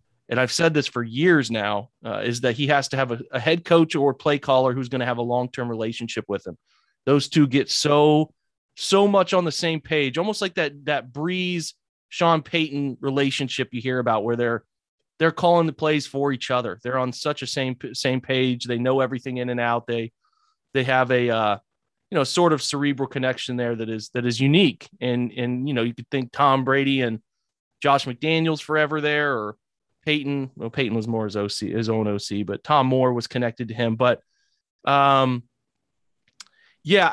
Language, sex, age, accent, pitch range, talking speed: English, male, 30-49, American, 125-165 Hz, 200 wpm